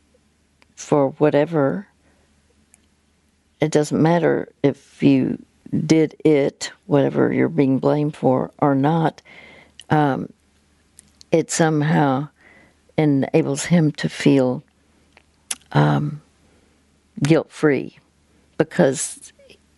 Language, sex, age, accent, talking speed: English, female, 60-79, American, 80 wpm